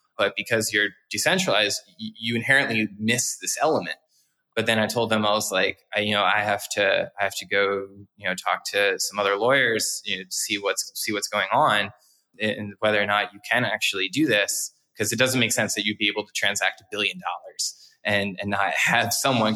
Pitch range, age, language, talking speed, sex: 100-110 Hz, 20-39, English, 220 wpm, male